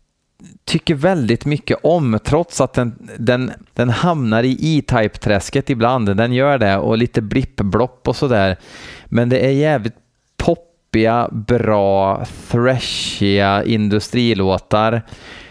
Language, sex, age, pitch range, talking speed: Swedish, male, 30-49, 100-125 Hz, 110 wpm